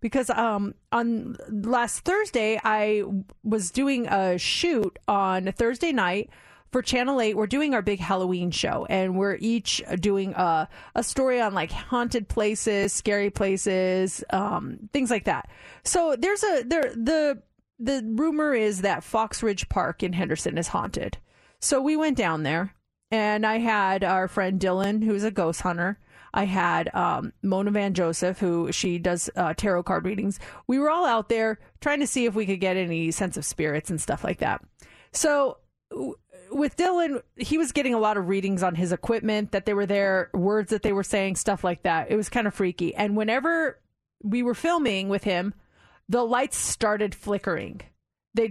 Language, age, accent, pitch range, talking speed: English, 30-49, American, 190-245 Hz, 180 wpm